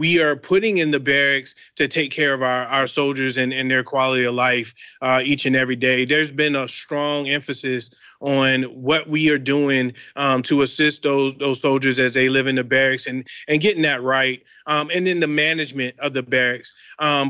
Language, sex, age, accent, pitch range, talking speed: English, male, 30-49, American, 135-160 Hz, 210 wpm